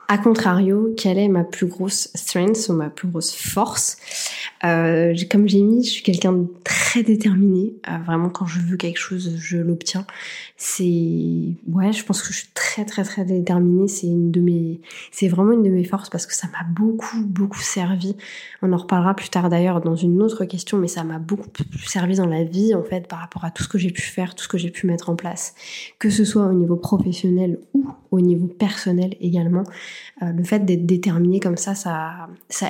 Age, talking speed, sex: 20-39, 215 wpm, female